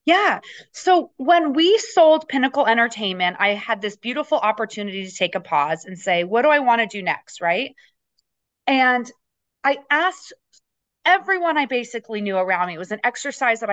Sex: female